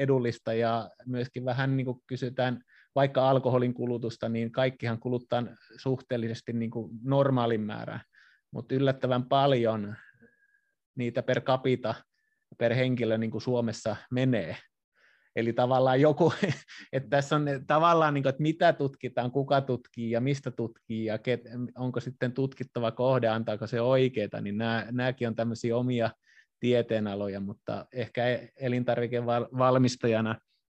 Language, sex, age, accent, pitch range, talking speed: Finnish, male, 20-39, native, 115-130 Hz, 125 wpm